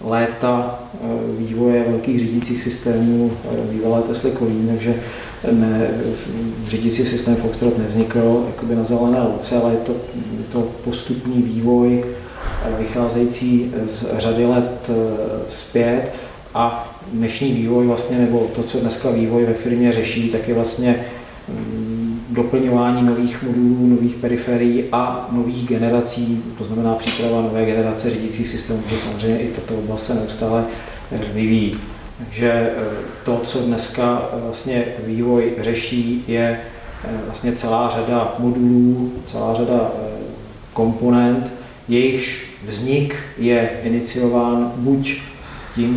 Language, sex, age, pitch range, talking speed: Czech, male, 40-59, 115-120 Hz, 115 wpm